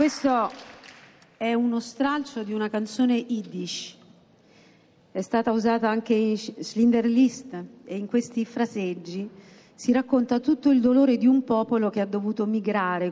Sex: female